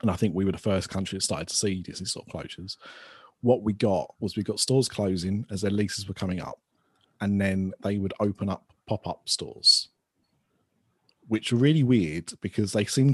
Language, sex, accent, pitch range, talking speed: English, male, British, 95-120 Hz, 205 wpm